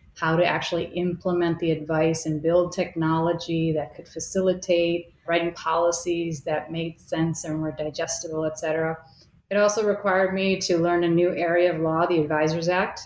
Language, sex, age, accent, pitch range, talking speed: English, female, 30-49, American, 155-180 Hz, 165 wpm